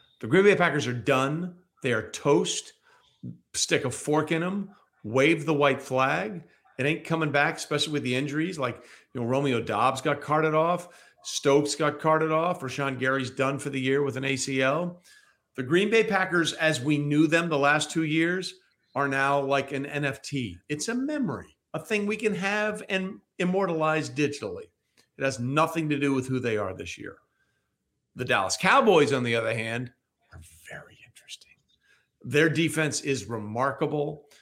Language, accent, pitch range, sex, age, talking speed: English, American, 130-160 Hz, male, 50-69, 170 wpm